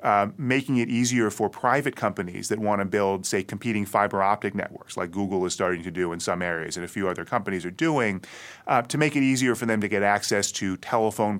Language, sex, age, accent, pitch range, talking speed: English, male, 30-49, American, 105-130 Hz, 230 wpm